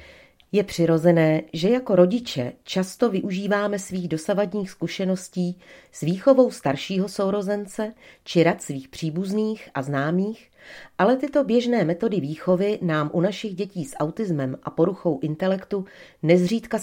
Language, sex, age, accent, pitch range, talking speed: Czech, female, 40-59, native, 150-190 Hz, 125 wpm